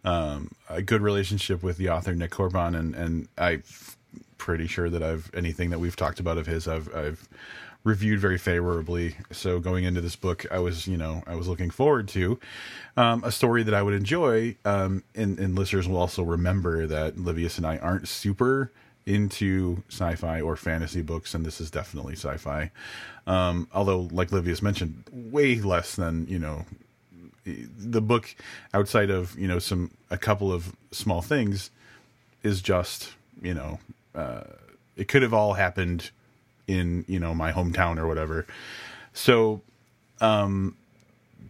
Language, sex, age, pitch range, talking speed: English, male, 30-49, 85-105 Hz, 165 wpm